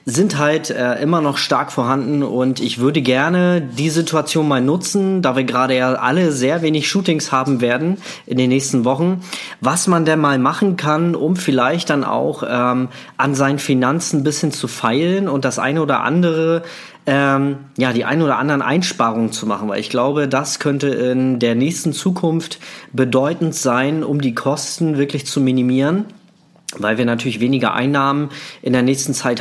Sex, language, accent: male, German, German